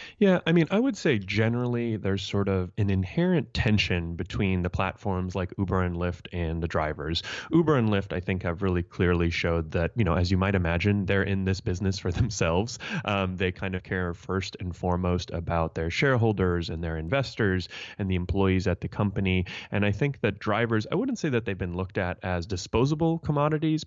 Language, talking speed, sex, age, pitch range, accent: English, 205 wpm, male, 30-49, 90-110 Hz, American